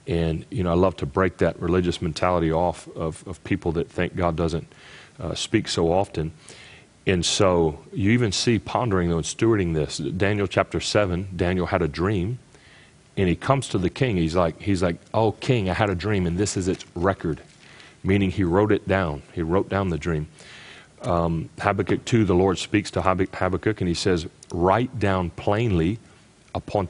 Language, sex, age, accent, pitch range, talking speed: English, male, 40-59, American, 85-100 Hz, 185 wpm